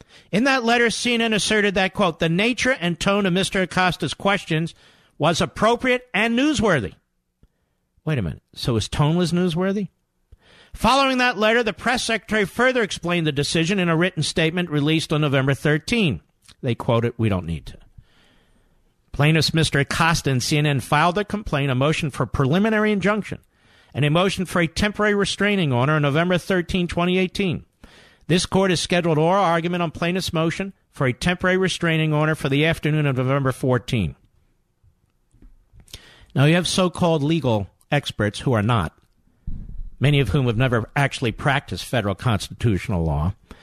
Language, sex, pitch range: English, male, 130-185 Hz